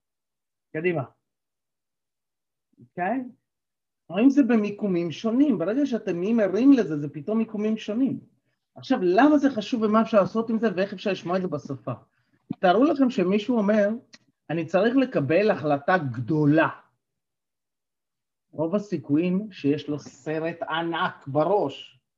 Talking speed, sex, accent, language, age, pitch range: 130 wpm, male, native, Hebrew, 30-49, 150-220 Hz